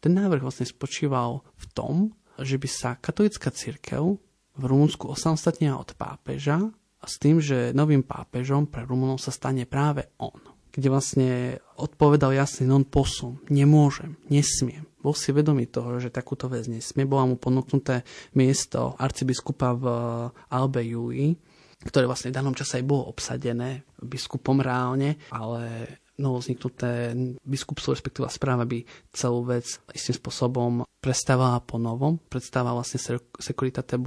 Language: Slovak